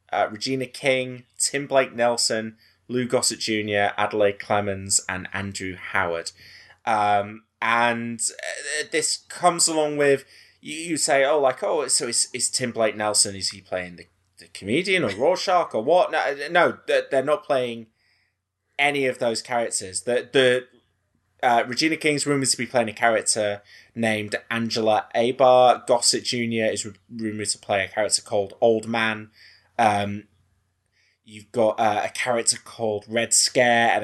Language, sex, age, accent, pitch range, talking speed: English, male, 20-39, British, 100-120 Hz, 150 wpm